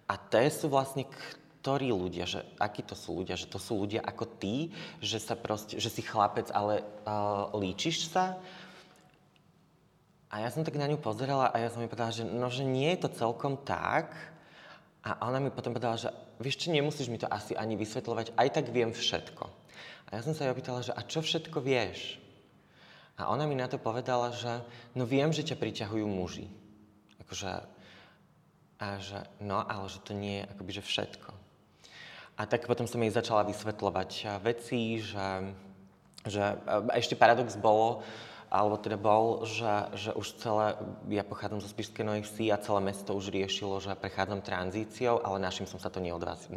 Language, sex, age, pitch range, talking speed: Slovak, male, 20-39, 100-130 Hz, 180 wpm